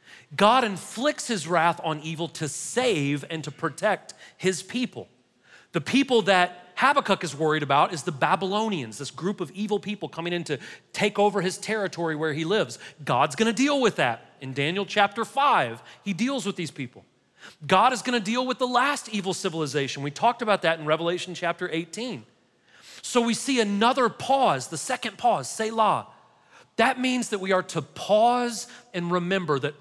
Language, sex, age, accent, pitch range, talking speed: English, male, 40-59, American, 155-225 Hz, 180 wpm